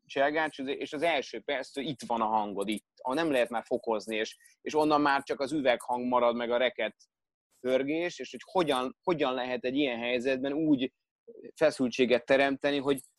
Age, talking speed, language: 30-49, 175 wpm, Hungarian